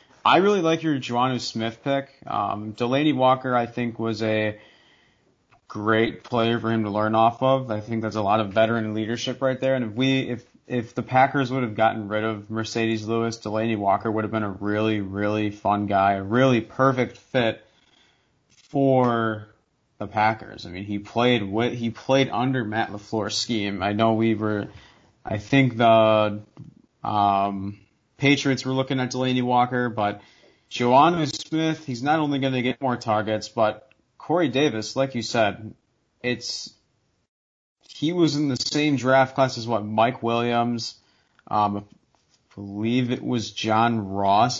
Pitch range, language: 110-130 Hz, English